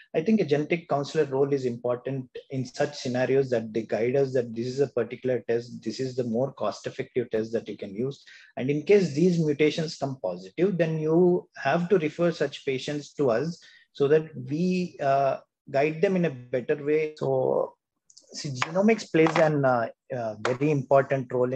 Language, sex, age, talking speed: English, male, 30-49, 185 wpm